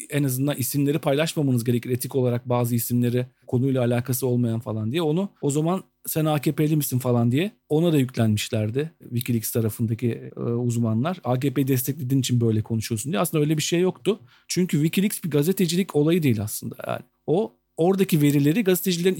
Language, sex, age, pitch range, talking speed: Turkish, male, 40-59, 125-165 Hz, 165 wpm